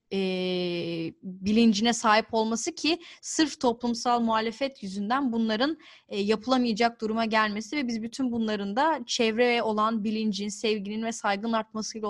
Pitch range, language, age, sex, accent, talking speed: 200-225 Hz, Turkish, 10-29, female, native, 130 wpm